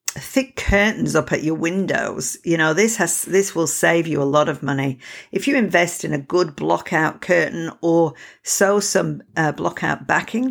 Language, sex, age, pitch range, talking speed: English, female, 50-69, 155-190 Hz, 185 wpm